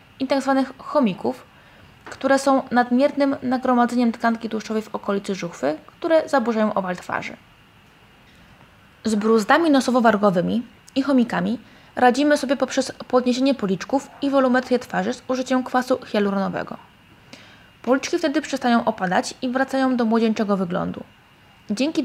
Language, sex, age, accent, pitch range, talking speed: Polish, female, 20-39, native, 215-270 Hz, 115 wpm